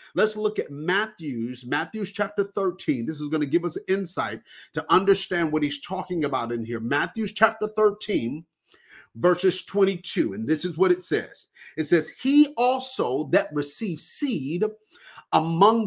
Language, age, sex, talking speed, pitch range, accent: English, 40-59, male, 150 wpm, 180-255 Hz, American